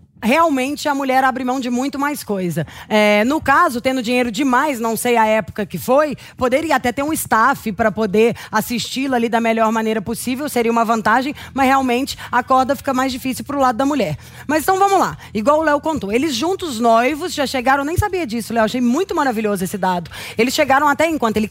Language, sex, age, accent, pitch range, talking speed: English, female, 20-39, Brazilian, 230-300 Hz, 210 wpm